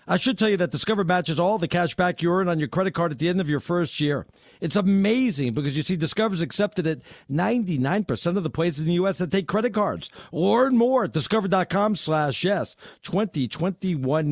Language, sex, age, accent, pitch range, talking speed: English, male, 50-69, American, 155-195 Hz, 215 wpm